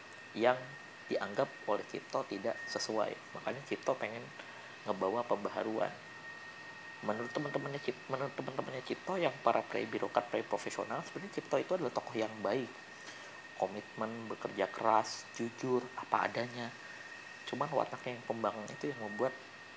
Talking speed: 120 wpm